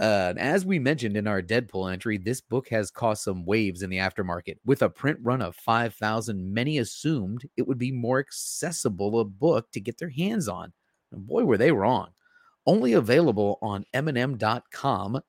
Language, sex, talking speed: English, male, 185 wpm